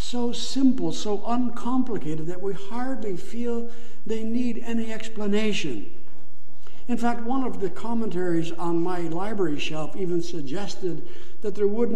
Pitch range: 180-225 Hz